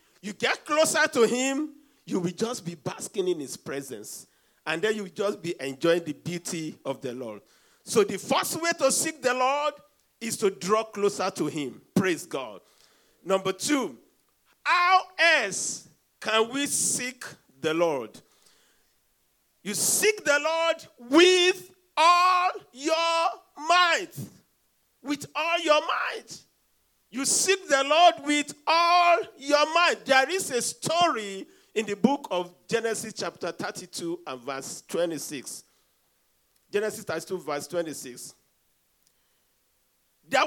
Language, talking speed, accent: English, 130 wpm, Nigerian